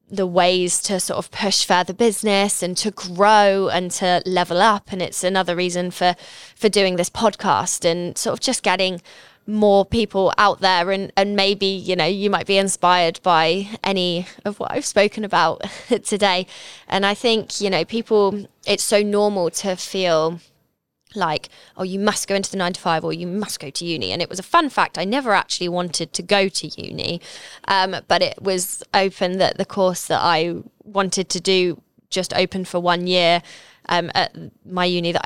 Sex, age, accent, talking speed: female, 20-39, British, 195 wpm